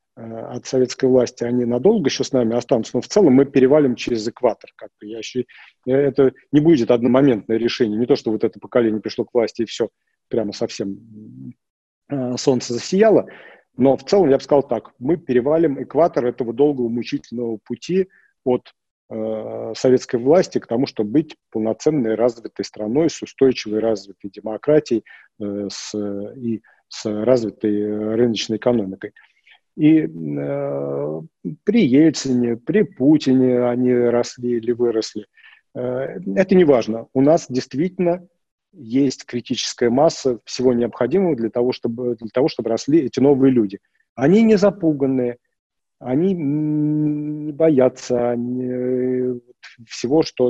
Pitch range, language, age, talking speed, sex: 115-140 Hz, Russian, 40-59, 135 wpm, male